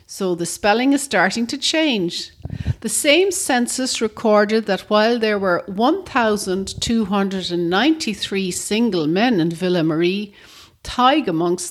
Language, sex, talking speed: English, female, 120 wpm